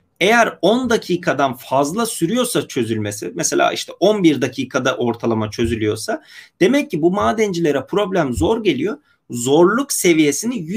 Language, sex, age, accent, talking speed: Turkish, male, 40-59, native, 115 wpm